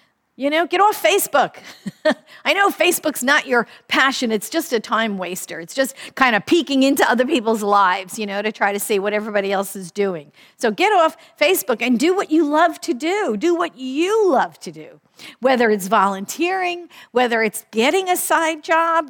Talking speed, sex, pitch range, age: 195 wpm, female, 220-325 Hz, 50-69